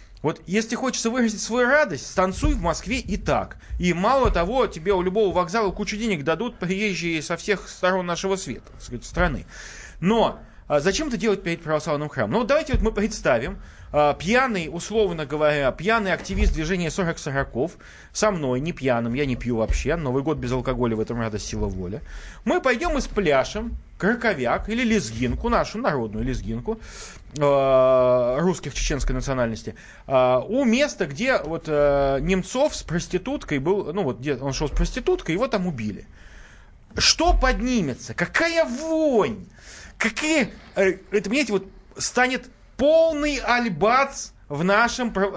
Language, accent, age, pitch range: Russian, native, 30-49, 140-220 Hz